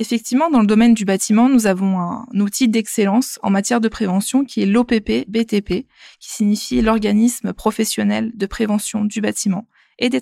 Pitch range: 205-235 Hz